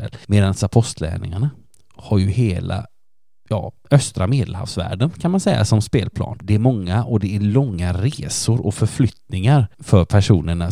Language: Swedish